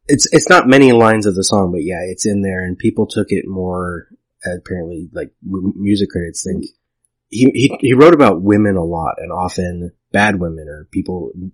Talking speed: 190 wpm